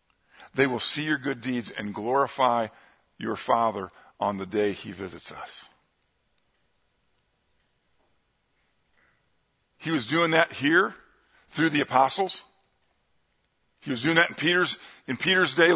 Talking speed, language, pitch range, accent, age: 125 wpm, English, 115-160 Hz, American, 50-69